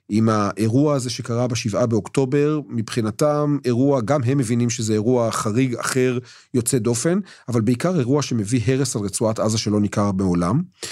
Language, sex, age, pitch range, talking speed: Hebrew, male, 40-59, 105-135 Hz, 155 wpm